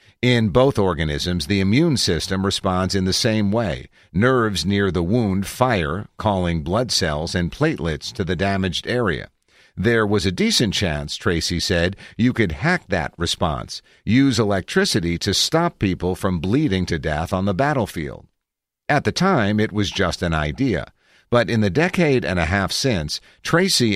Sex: male